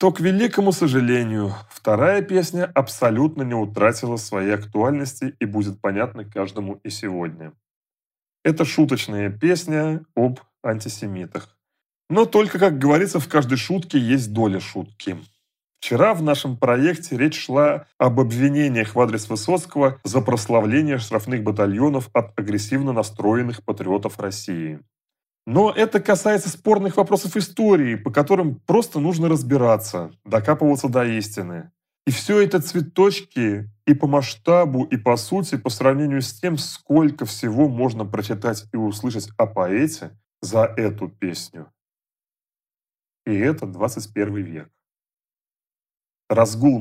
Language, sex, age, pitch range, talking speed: Russian, male, 30-49, 105-155 Hz, 125 wpm